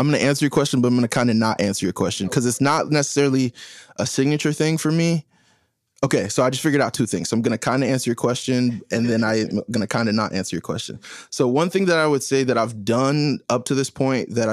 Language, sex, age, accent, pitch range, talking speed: English, male, 20-39, American, 105-125 Hz, 280 wpm